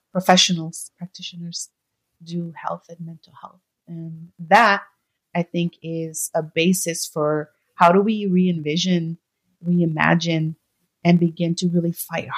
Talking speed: 120 wpm